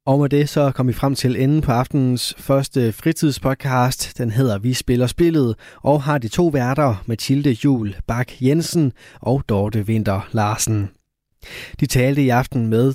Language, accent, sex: Danish, native, male